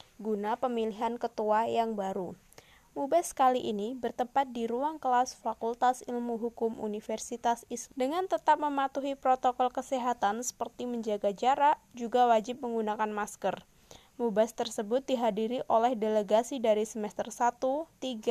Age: 20-39